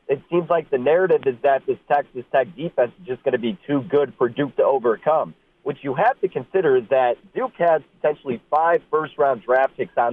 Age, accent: 40-59, American